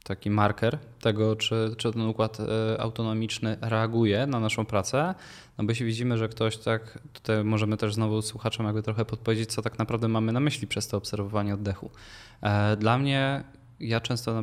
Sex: male